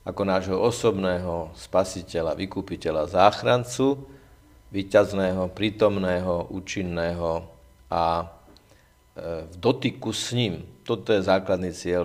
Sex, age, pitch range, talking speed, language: male, 50-69, 90-100 Hz, 90 wpm, Slovak